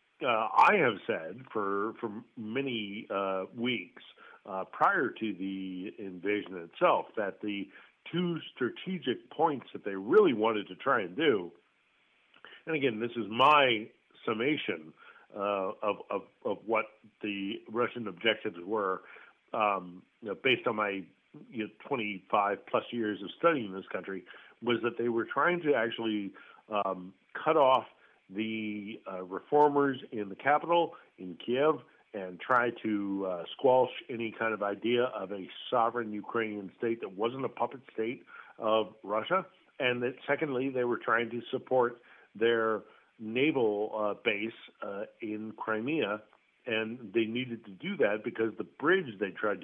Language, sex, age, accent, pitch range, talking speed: English, male, 50-69, American, 100-120 Hz, 145 wpm